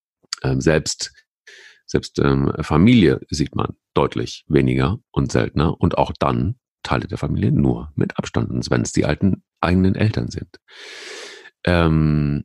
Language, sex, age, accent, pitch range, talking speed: German, male, 40-59, German, 75-100 Hz, 130 wpm